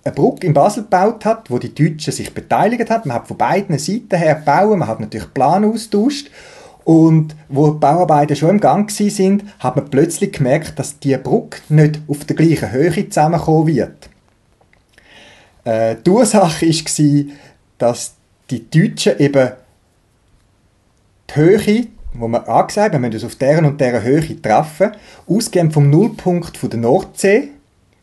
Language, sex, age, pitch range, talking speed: German, male, 30-49, 125-175 Hz, 150 wpm